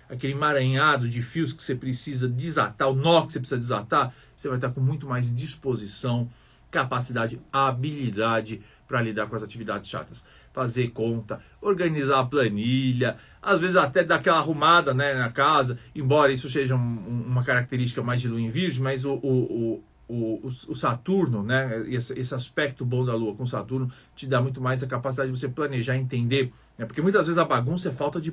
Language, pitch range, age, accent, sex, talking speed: Portuguese, 125-155 Hz, 40-59, Brazilian, male, 190 wpm